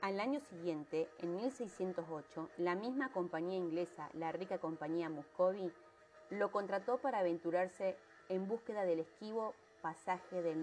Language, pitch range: Spanish, 170-215 Hz